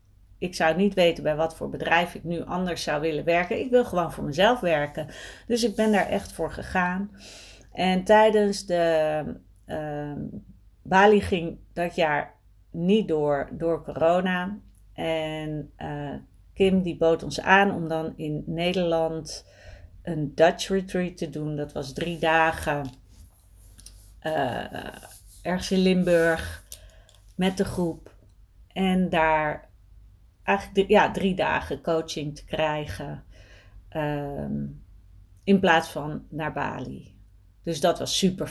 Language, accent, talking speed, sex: Dutch, Dutch, 130 wpm, female